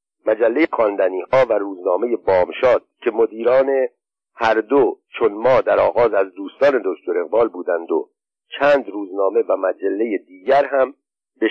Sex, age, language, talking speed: male, 50-69, Persian, 140 wpm